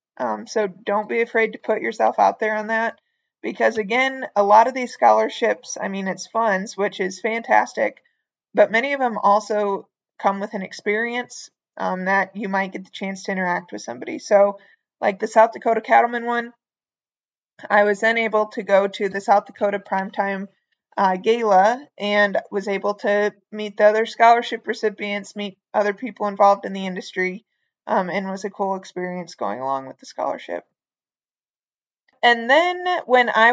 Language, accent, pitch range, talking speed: English, American, 200-235 Hz, 175 wpm